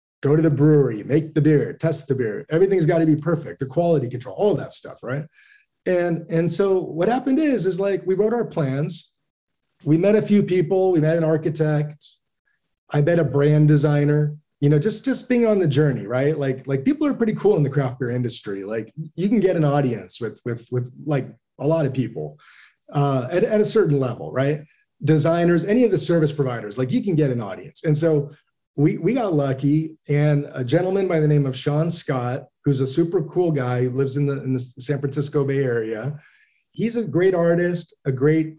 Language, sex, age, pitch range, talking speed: English, male, 30-49, 140-170 Hz, 215 wpm